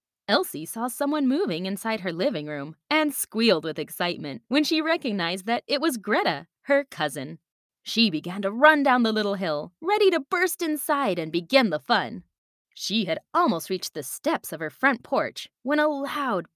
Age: 20-39